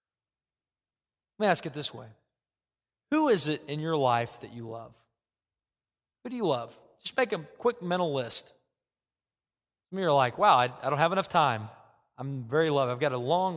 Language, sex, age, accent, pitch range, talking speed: English, male, 40-59, American, 130-185 Hz, 195 wpm